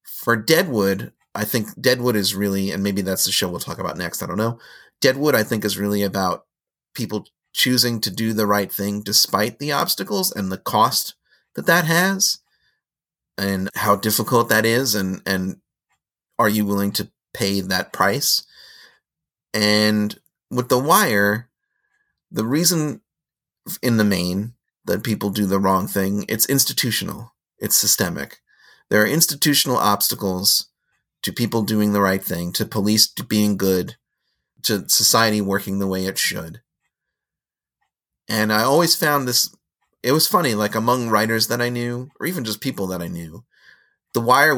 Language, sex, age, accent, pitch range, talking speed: English, male, 30-49, American, 100-120 Hz, 160 wpm